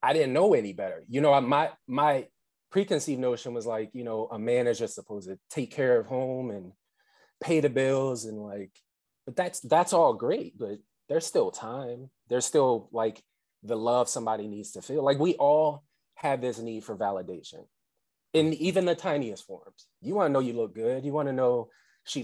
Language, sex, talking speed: English, male, 200 wpm